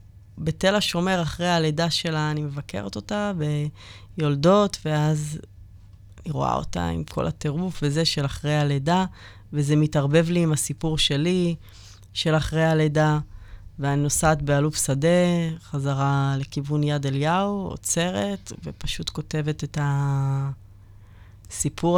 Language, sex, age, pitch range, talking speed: Hebrew, female, 20-39, 105-155 Hz, 115 wpm